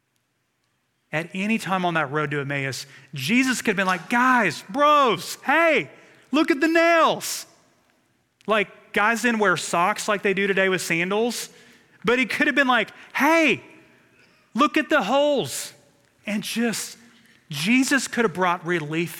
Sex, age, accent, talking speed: male, 30-49, American, 155 wpm